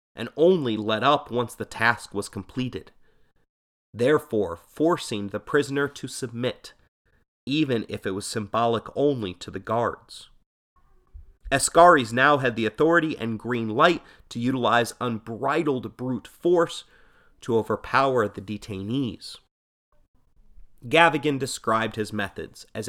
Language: English